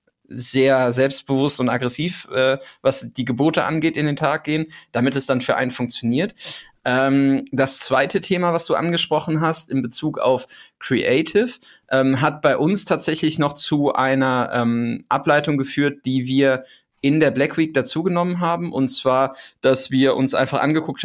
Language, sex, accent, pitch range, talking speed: German, male, German, 130-155 Hz, 165 wpm